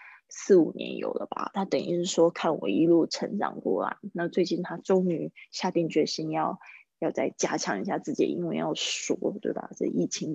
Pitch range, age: 175-225 Hz, 20-39